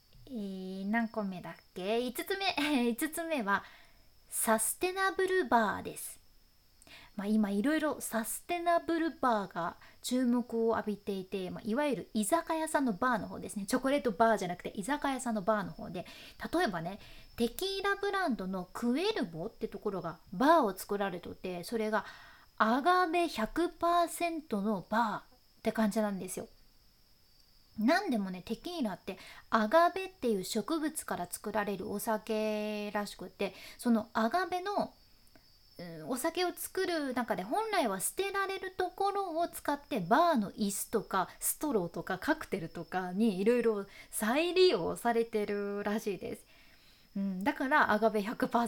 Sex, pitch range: female, 205-310 Hz